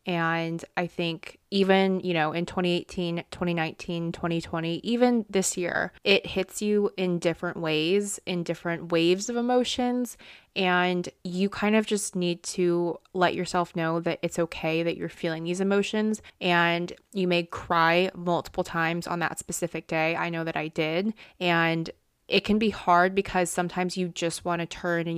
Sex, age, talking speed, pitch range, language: female, 20-39, 165 wpm, 170-185 Hz, English